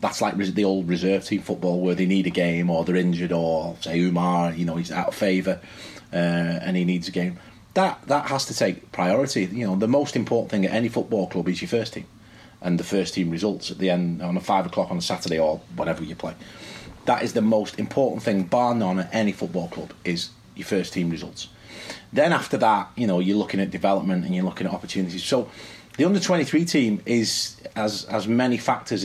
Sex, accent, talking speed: male, British, 225 wpm